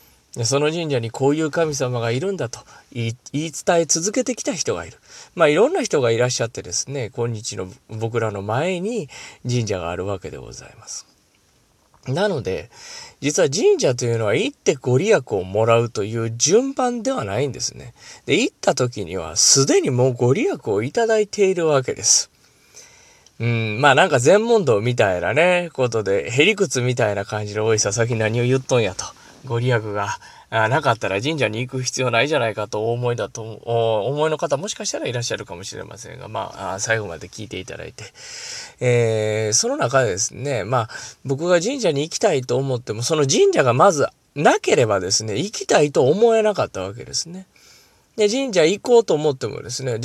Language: Japanese